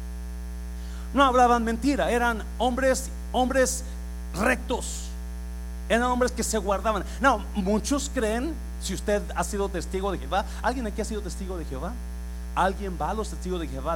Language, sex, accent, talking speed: Spanish, male, Mexican, 155 wpm